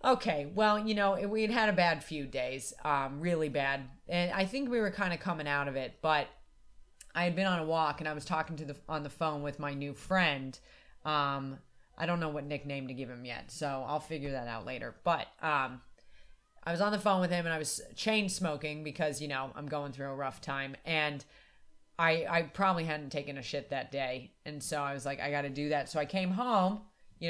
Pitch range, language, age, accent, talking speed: 140-170 Hz, English, 30-49, American, 240 wpm